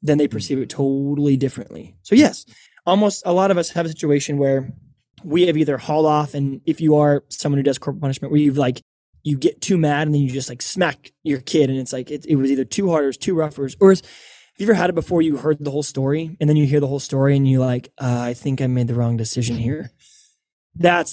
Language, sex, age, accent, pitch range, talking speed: English, male, 20-39, American, 130-155 Hz, 265 wpm